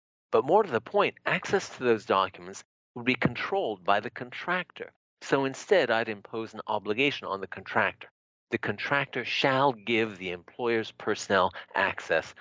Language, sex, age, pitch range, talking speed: English, male, 50-69, 100-135 Hz, 155 wpm